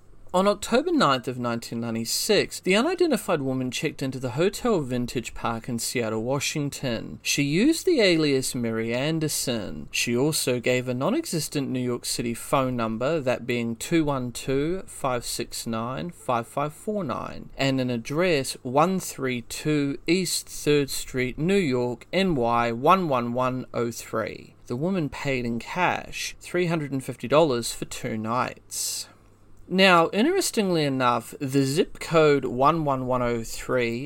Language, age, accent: English, 30-49, Australian